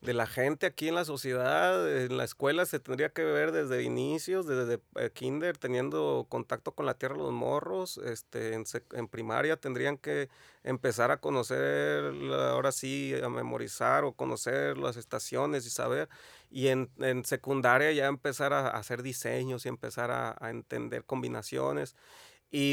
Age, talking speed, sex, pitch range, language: 30-49, 165 wpm, male, 120-150 Hz, Spanish